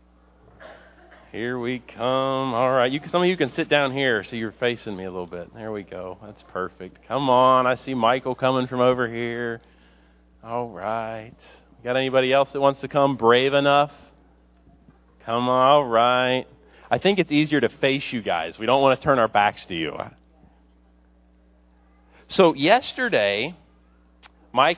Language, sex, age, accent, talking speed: English, male, 40-59, American, 165 wpm